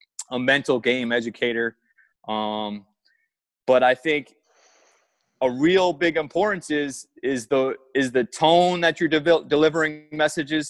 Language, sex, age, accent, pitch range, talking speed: English, male, 20-39, American, 130-160 Hz, 130 wpm